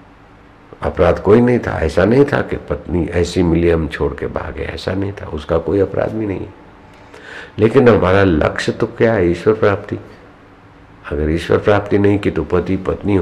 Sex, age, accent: male, 60-79, native